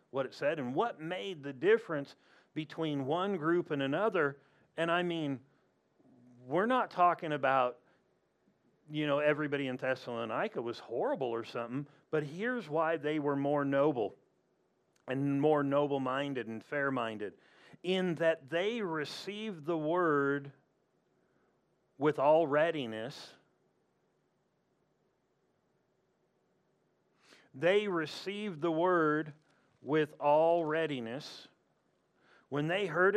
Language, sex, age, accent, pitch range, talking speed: English, male, 40-59, American, 140-165 Hz, 110 wpm